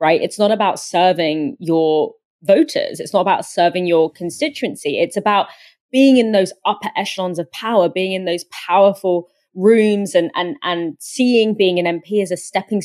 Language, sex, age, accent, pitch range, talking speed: English, female, 20-39, British, 175-225 Hz, 175 wpm